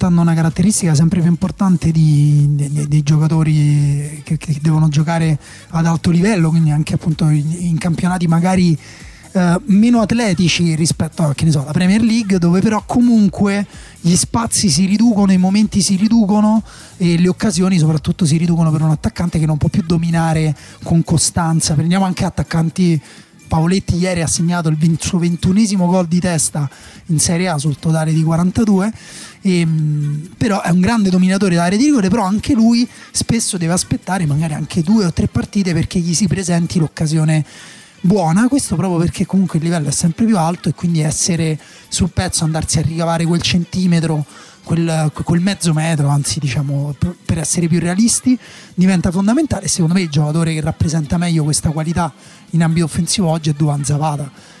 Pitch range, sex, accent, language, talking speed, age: 155-185 Hz, male, native, Italian, 170 wpm, 20-39